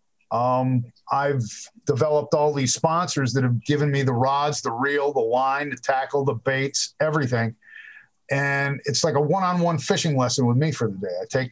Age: 50-69